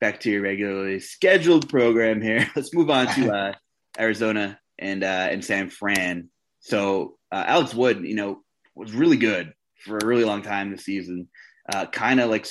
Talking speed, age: 180 wpm, 20-39